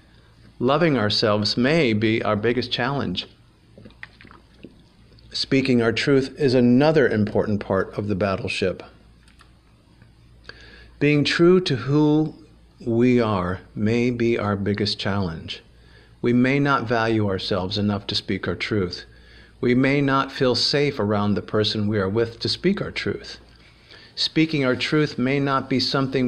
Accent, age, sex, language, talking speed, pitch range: American, 50-69, male, English, 135 wpm, 105-125 Hz